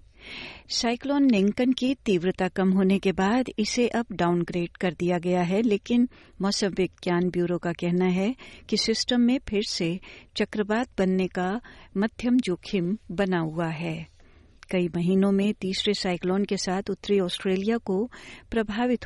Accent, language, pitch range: native, Hindi, 180-220 Hz